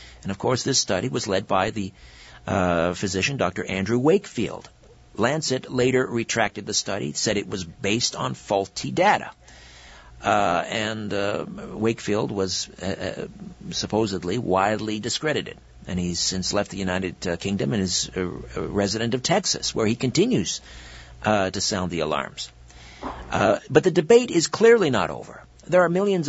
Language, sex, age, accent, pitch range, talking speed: English, male, 50-69, American, 90-125 Hz, 155 wpm